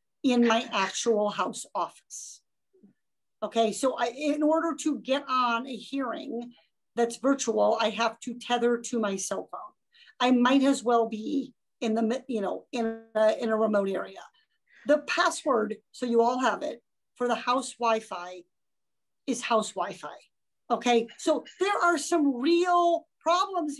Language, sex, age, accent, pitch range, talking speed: English, female, 50-69, American, 225-300 Hz, 150 wpm